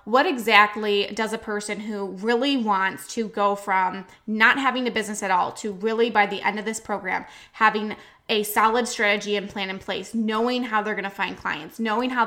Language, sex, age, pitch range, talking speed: English, female, 10-29, 205-230 Hz, 205 wpm